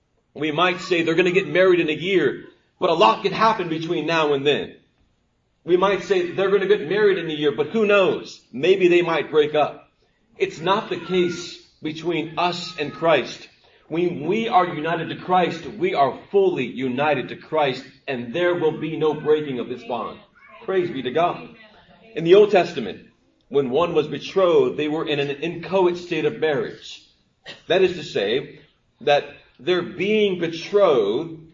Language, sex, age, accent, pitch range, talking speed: English, male, 40-59, American, 150-195 Hz, 185 wpm